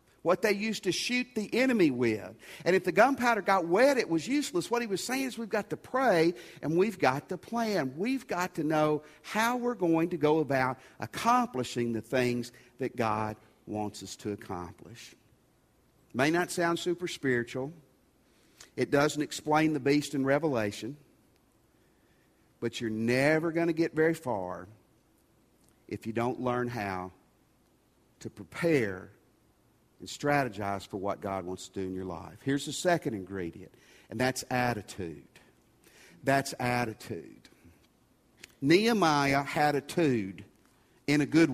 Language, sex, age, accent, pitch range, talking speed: English, male, 50-69, American, 120-180 Hz, 150 wpm